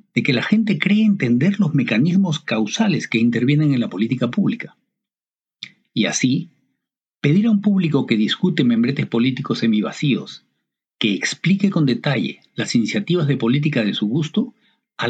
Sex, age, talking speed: male, 50-69, 150 wpm